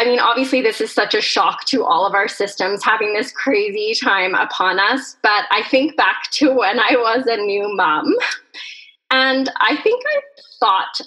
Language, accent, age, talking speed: English, American, 20-39, 190 wpm